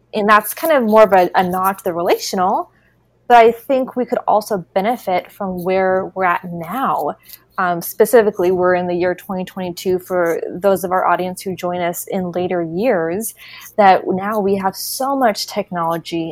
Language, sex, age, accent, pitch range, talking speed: English, female, 20-39, American, 180-215 Hz, 180 wpm